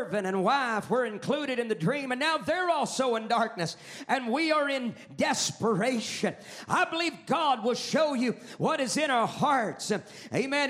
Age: 50-69